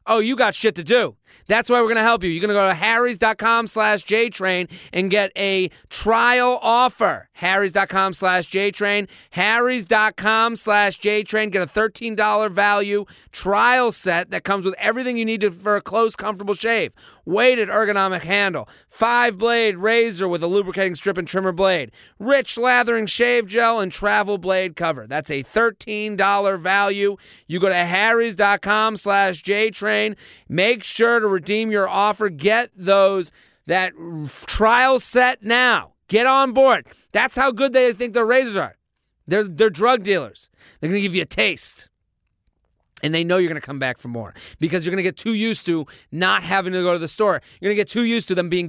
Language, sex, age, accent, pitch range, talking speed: English, male, 30-49, American, 185-225 Hz, 180 wpm